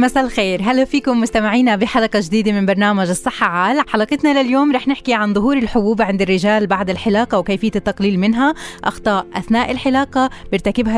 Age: 20-39